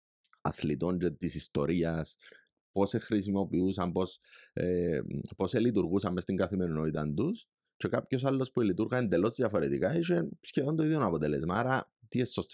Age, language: 30-49, Greek